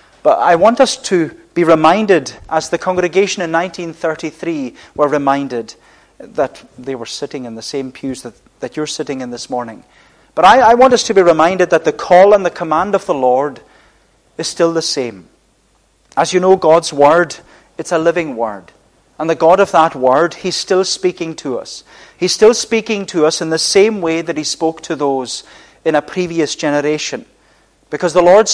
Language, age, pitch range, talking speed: English, 30-49, 145-180 Hz, 190 wpm